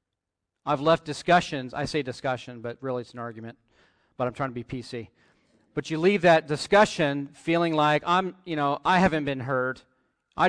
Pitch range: 125-170 Hz